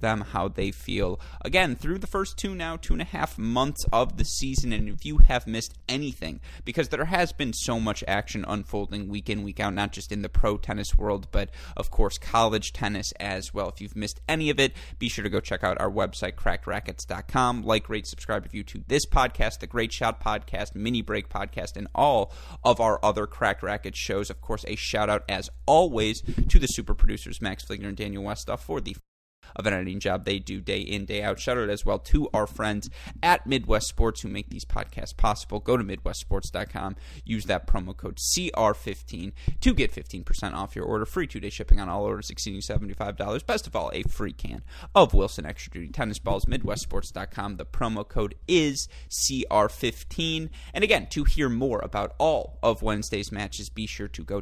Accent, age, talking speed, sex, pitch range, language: American, 30-49, 205 wpm, male, 100-120 Hz, English